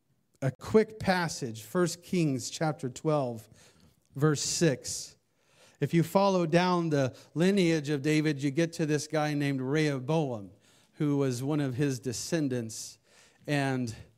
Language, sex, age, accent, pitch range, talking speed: English, male, 40-59, American, 130-190 Hz, 130 wpm